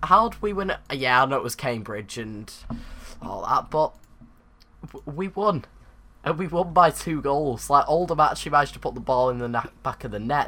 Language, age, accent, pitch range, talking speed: English, 10-29, British, 115-155 Hz, 210 wpm